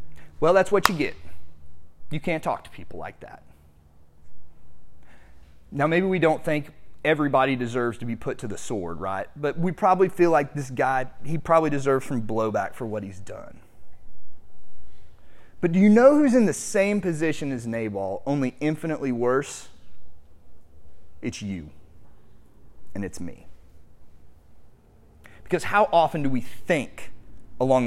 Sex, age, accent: male, 30-49, American